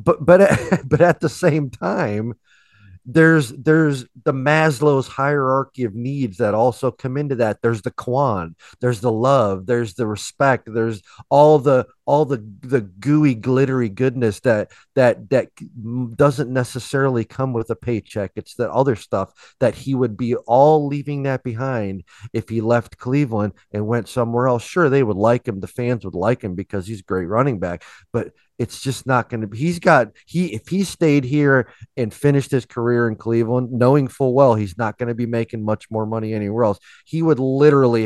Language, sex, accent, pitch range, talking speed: English, male, American, 105-135 Hz, 190 wpm